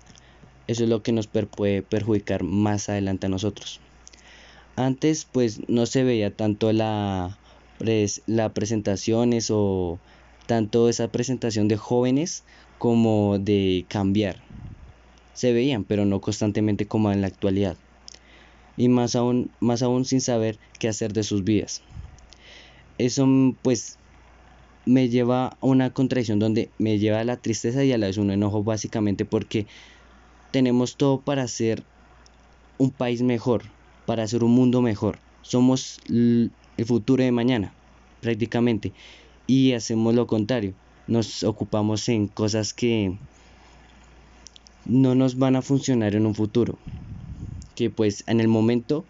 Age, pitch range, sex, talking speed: 10-29, 100-120 Hz, male, 140 wpm